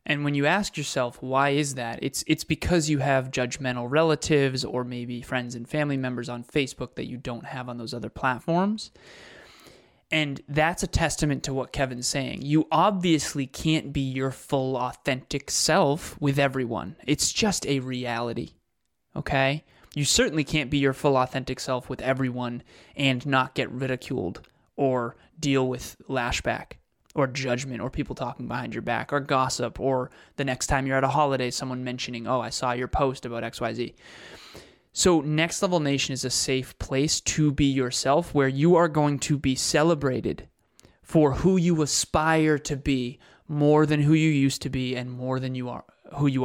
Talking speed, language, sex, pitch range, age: 175 wpm, English, male, 125-150 Hz, 20-39